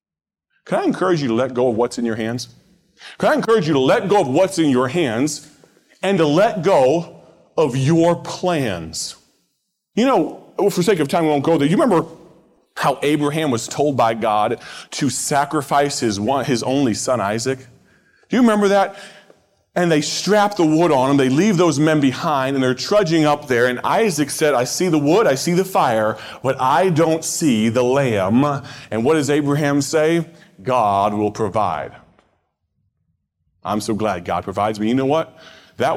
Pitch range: 120-165 Hz